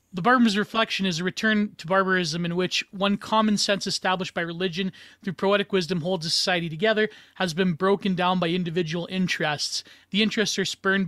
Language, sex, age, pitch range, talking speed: English, male, 30-49, 170-200 Hz, 185 wpm